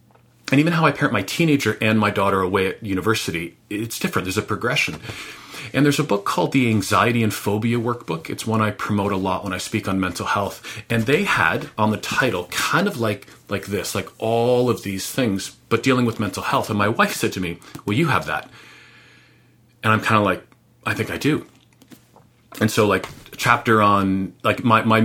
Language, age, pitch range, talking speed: English, 40-59, 95-115 Hz, 215 wpm